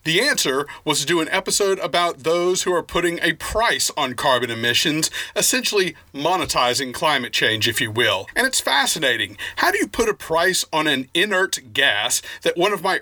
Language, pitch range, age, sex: English, 135-180 Hz, 40-59, male